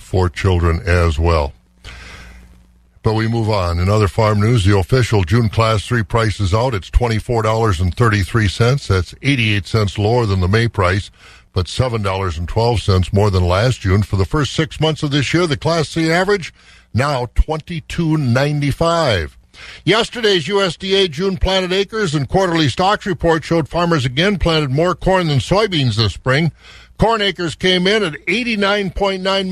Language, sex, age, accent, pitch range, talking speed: English, male, 60-79, American, 115-170 Hz, 150 wpm